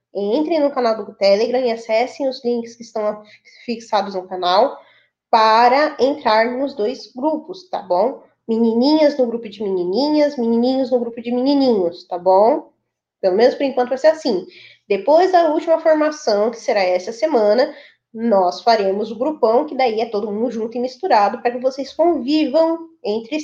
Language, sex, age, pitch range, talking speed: Portuguese, female, 10-29, 215-295 Hz, 165 wpm